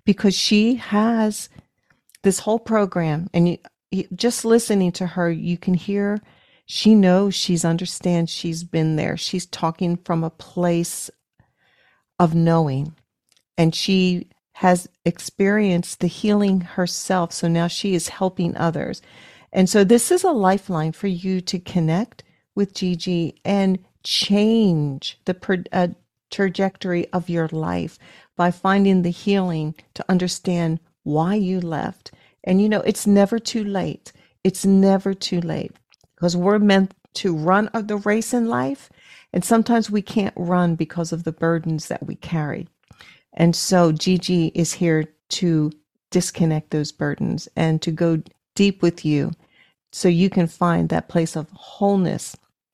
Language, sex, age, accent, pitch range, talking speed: English, female, 40-59, American, 165-195 Hz, 145 wpm